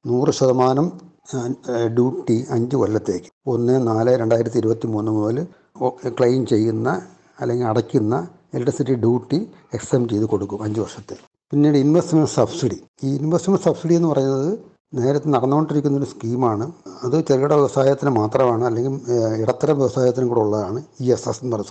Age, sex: 60-79, male